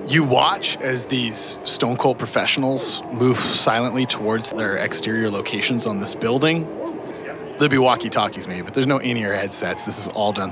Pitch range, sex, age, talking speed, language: 120-155 Hz, male, 30-49, 165 wpm, English